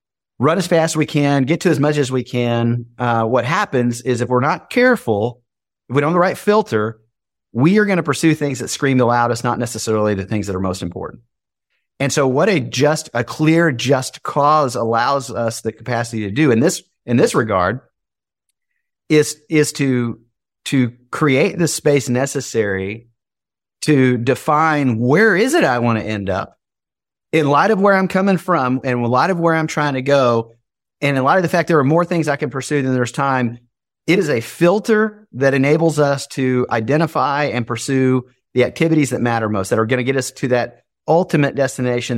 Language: English